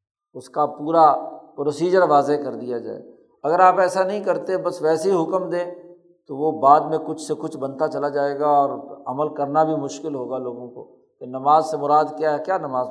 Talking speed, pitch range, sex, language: 205 wpm, 135-160 Hz, male, Urdu